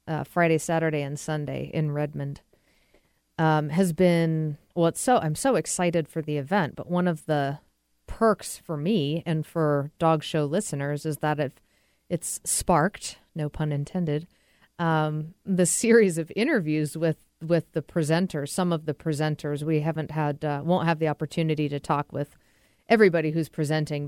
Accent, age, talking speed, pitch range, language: American, 40-59, 165 wpm, 150-165 Hz, English